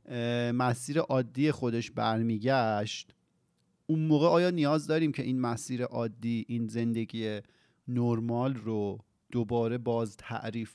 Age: 40-59